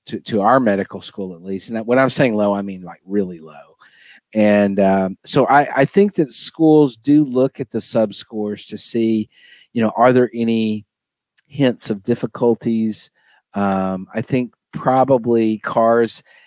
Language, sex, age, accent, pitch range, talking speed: English, male, 40-59, American, 100-125 Hz, 170 wpm